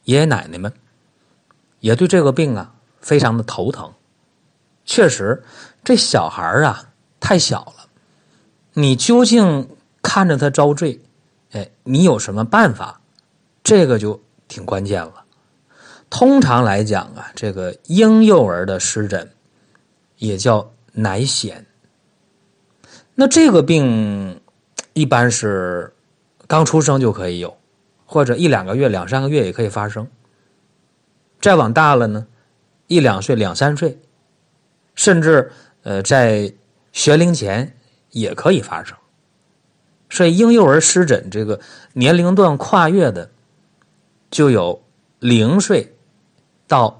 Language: Chinese